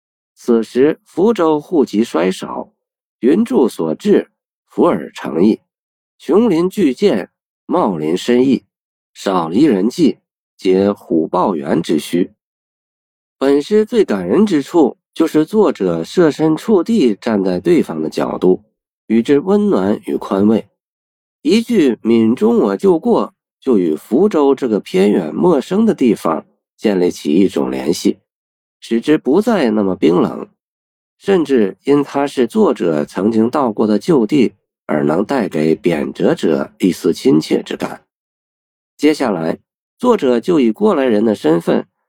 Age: 50-69